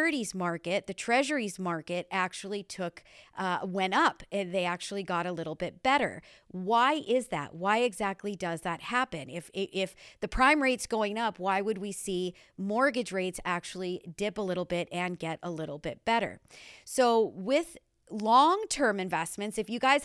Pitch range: 180-230 Hz